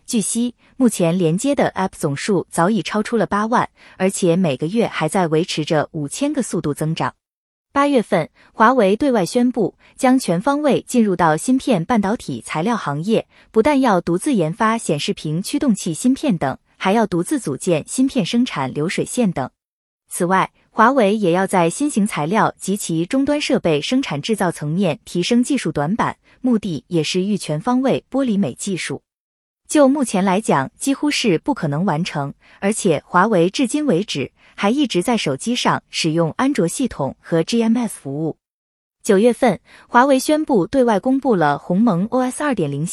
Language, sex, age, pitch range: Chinese, female, 20-39, 165-250 Hz